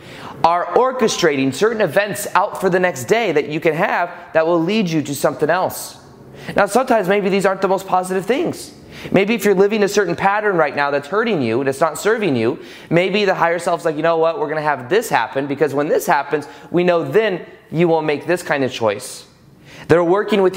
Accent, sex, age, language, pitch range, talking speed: American, male, 30-49, English, 155-200 Hz, 220 wpm